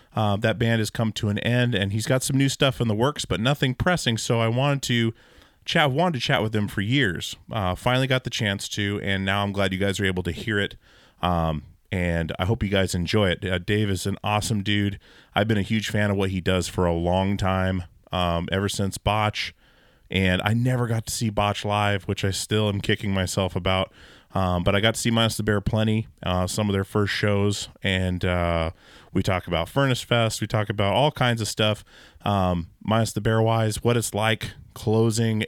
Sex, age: male, 30-49